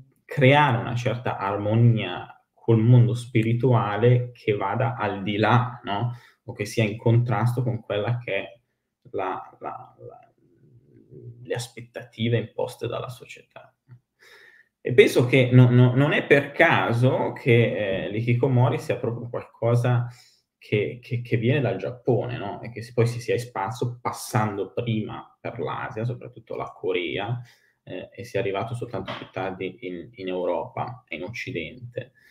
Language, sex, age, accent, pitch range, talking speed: Italian, male, 20-39, native, 110-125 Hz, 140 wpm